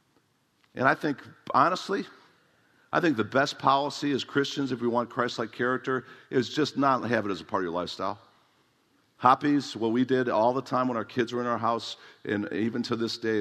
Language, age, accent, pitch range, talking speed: English, 50-69, American, 110-135 Hz, 205 wpm